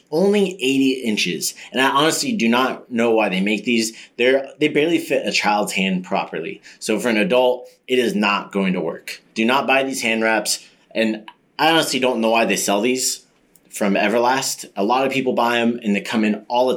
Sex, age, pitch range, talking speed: male, 30-49, 105-125 Hz, 215 wpm